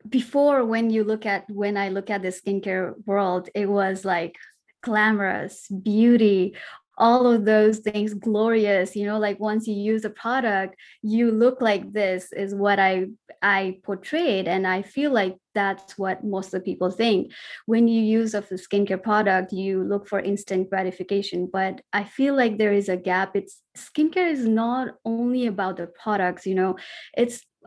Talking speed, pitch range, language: 175 wpm, 190-225 Hz, English